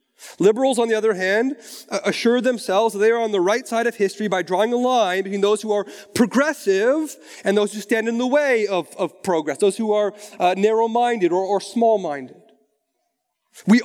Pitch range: 210-255 Hz